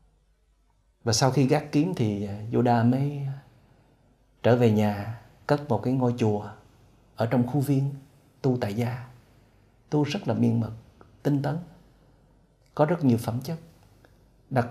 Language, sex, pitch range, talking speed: Vietnamese, male, 110-130 Hz, 145 wpm